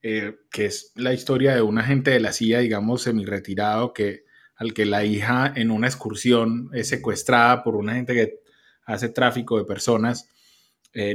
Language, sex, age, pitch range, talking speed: Spanish, male, 20-39, 115-140 Hz, 180 wpm